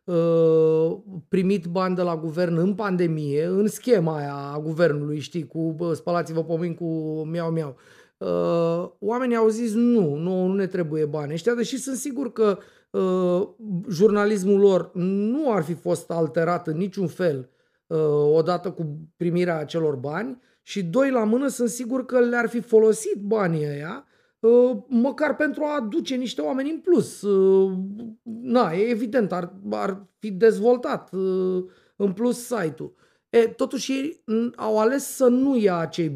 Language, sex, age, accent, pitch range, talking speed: Romanian, male, 30-49, native, 170-235 Hz, 145 wpm